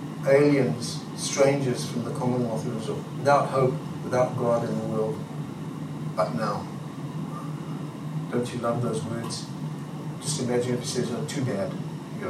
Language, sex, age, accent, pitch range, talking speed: English, male, 60-79, British, 115-140 Hz, 140 wpm